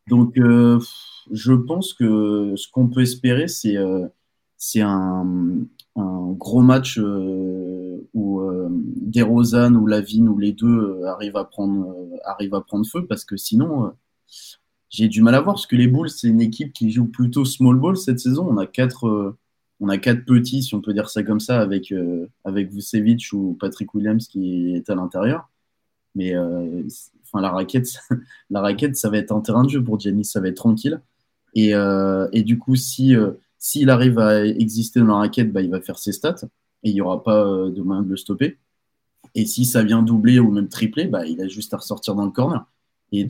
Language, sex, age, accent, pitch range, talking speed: French, male, 20-39, French, 100-125 Hz, 215 wpm